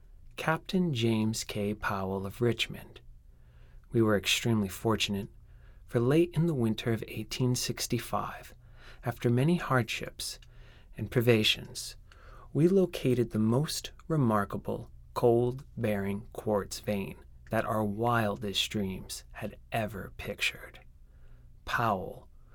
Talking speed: 100 wpm